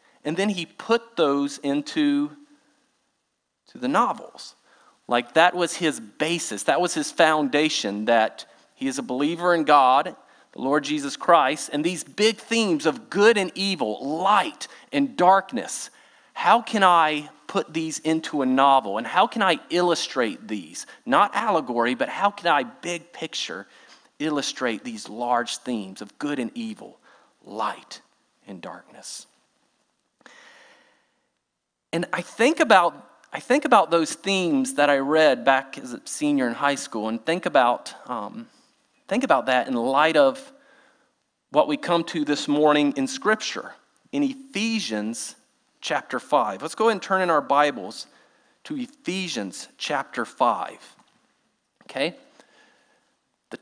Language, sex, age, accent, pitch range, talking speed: English, male, 40-59, American, 145-235 Hz, 145 wpm